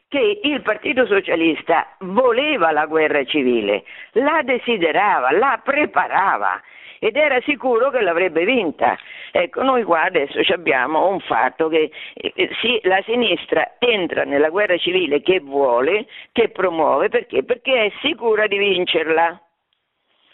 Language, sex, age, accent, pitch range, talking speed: Italian, female, 50-69, native, 170-285 Hz, 125 wpm